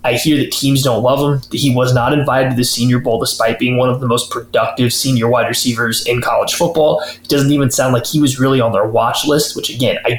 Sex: male